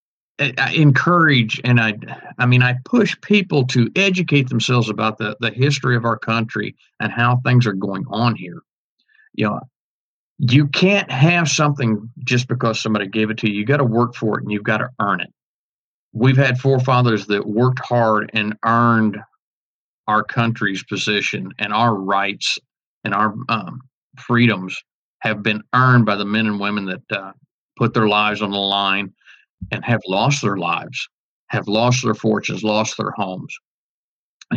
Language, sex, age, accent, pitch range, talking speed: English, male, 50-69, American, 110-135 Hz, 170 wpm